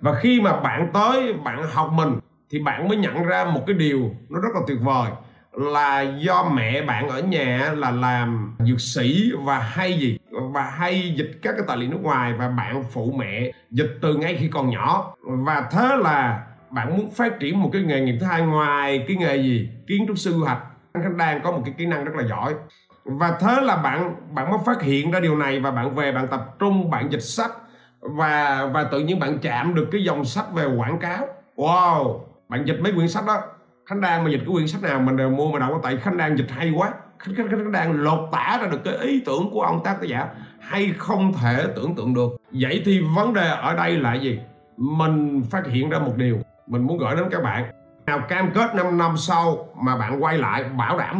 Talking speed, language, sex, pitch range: 230 wpm, Vietnamese, male, 130-180 Hz